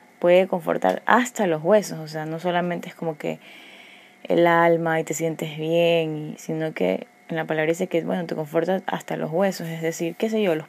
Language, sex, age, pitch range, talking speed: Spanish, female, 20-39, 160-180 Hz, 210 wpm